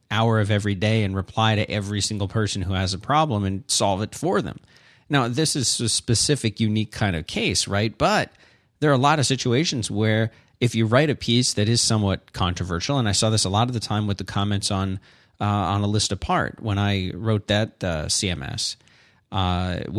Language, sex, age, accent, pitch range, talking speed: English, male, 30-49, American, 105-130 Hz, 215 wpm